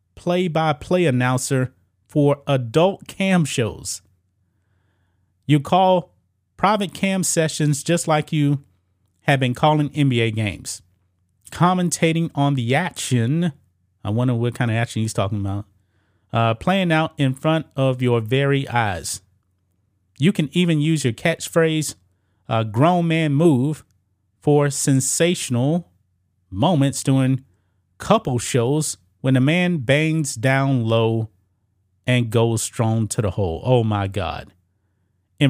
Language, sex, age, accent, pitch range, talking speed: English, male, 30-49, American, 100-155 Hz, 125 wpm